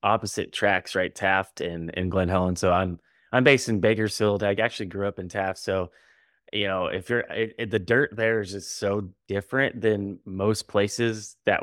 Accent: American